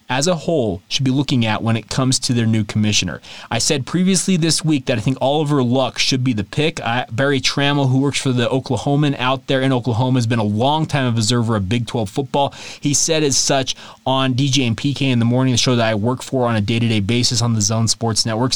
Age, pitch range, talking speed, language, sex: 20-39, 120-145 Hz, 245 wpm, English, male